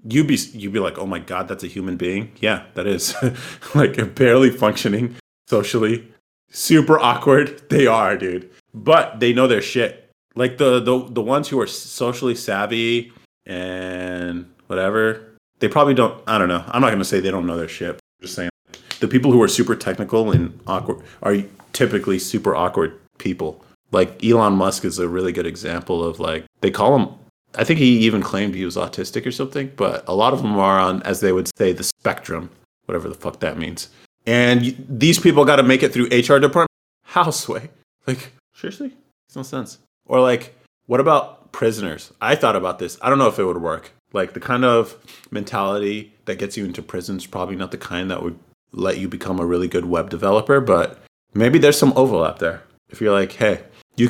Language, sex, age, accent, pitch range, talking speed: English, male, 30-49, American, 95-130 Hz, 205 wpm